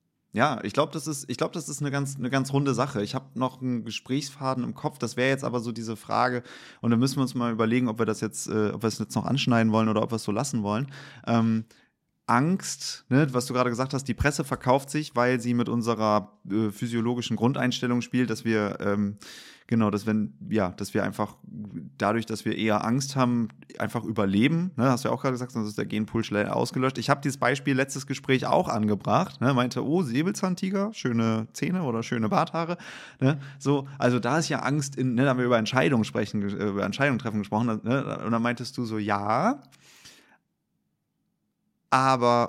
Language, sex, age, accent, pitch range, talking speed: German, male, 20-39, German, 110-135 Hz, 210 wpm